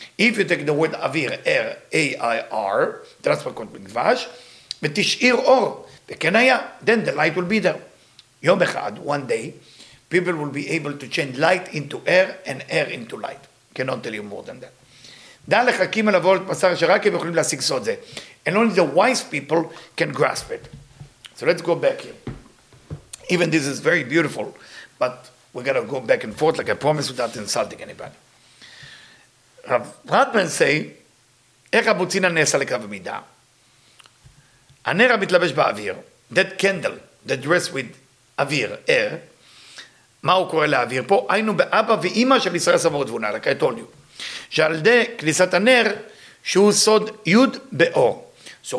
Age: 50-69